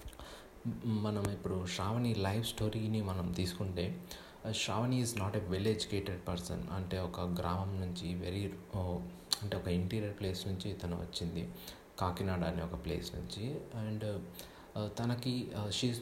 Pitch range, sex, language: 90-110 Hz, male, Telugu